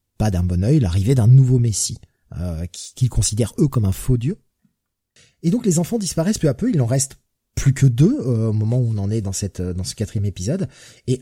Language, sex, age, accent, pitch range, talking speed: French, male, 30-49, French, 110-150 Hz, 235 wpm